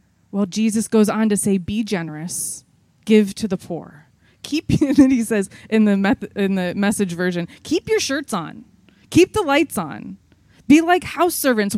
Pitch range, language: 175-245 Hz, English